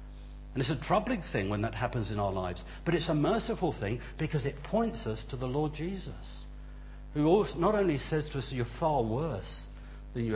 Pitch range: 85-140 Hz